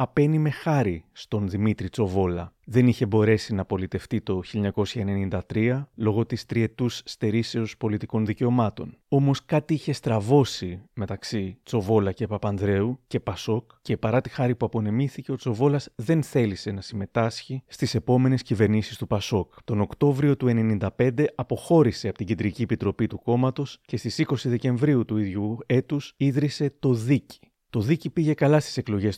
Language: Greek